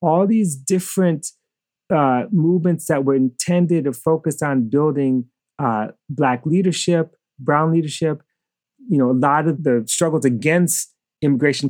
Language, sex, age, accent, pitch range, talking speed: English, male, 30-49, American, 130-170 Hz, 125 wpm